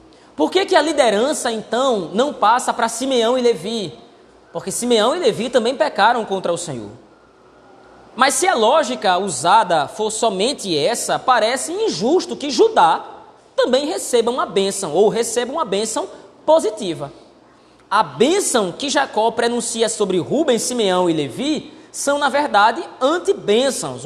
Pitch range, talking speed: 205-275 Hz, 140 wpm